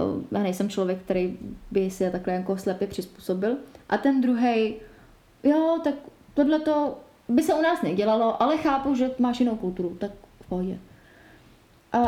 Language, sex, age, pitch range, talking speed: Czech, female, 20-39, 210-260 Hz, 155 wpm